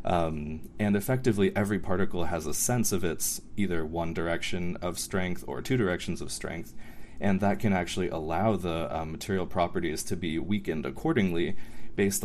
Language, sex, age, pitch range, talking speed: English, male, 20-39, 85-105 Hz, 165 wpm